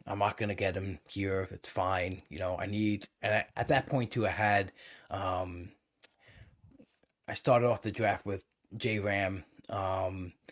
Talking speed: 165 wpm